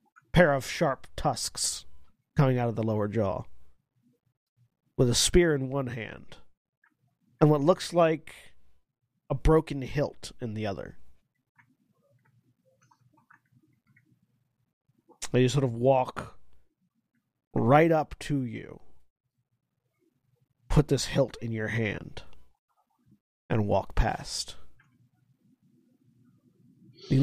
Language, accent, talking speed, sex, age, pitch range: English, American, 95 wpm, male, 40-59, 120-155 Hz